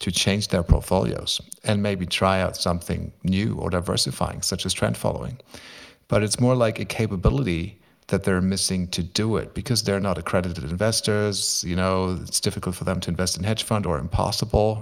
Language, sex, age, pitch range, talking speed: English, male, 50-69, 90-110 Hz, 185 wpm